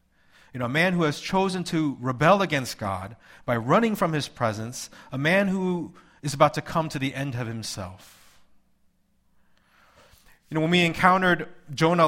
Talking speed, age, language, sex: 170 wpm, 30-49, English, male